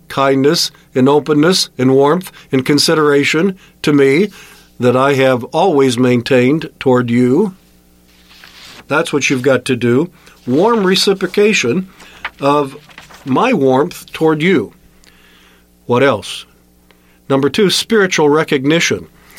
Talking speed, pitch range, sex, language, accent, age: 110 wpm, 120-160 Hz, male, English, American, 50-69